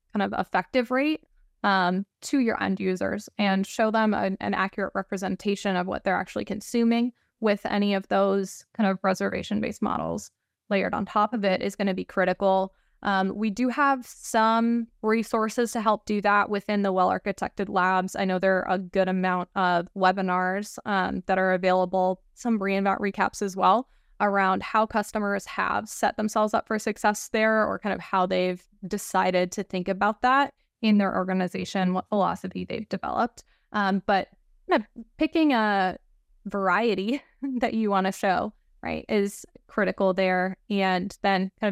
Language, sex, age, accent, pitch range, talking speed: English, female, 10-29, American, 190-220 Hz, 165 wpm